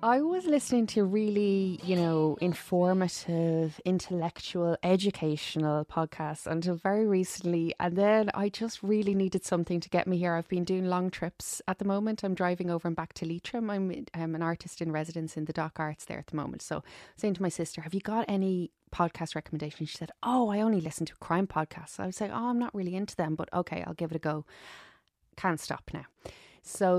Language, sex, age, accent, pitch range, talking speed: English, female, 20-39, Irish, 165-200 Hz, 210 wpm